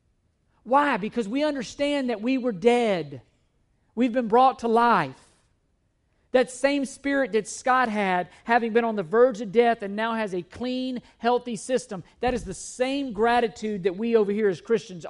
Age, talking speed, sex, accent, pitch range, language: 50-69, 175 wpm, male, American, 155-230 Hz, English